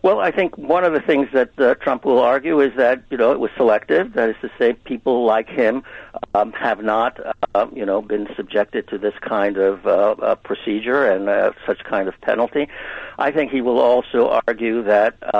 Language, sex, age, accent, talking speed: English, male, 60-79, American, 210 wpm